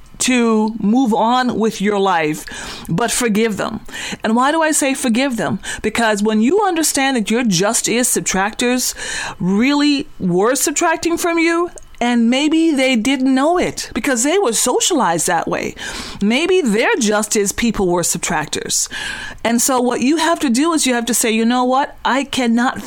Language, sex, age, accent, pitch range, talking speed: English, female, 40-59, American, 205-270 Hz, 170 wpm